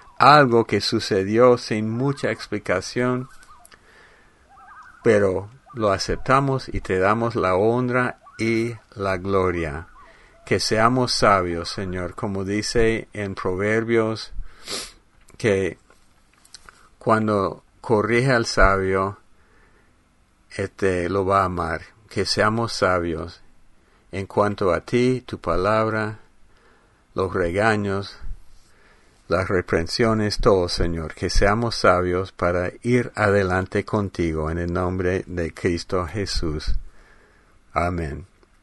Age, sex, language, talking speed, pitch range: 50-69, male, English, 100 wpm, 95-125 Hz